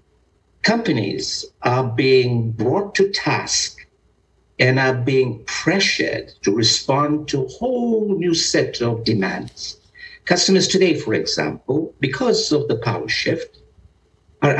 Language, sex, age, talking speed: English, male, 60-79, 120 wpm